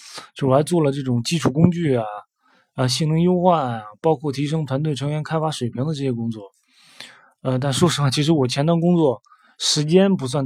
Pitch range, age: 130-165 Hz, 20-39